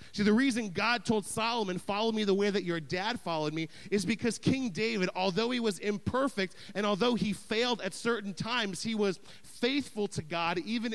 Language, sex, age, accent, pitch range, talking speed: English, male, 30-49, American, 160-215 Hz, 195 wpm